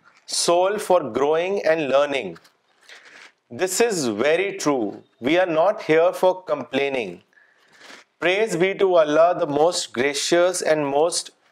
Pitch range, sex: 150-180 Hz, male